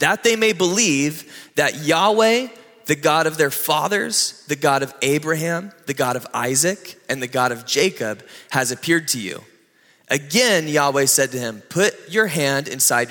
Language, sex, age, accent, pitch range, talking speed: English, male, 20-39, American, 130-180 Hz, 170 wpm